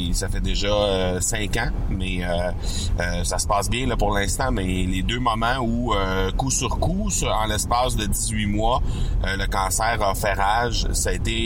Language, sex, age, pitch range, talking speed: French, male, 30-49, 95-110 Hz, 210 wpm